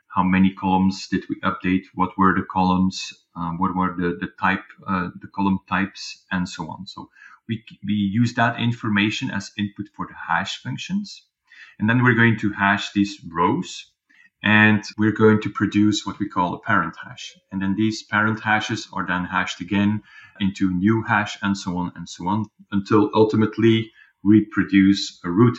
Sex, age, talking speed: male, 30-49, 185 wpm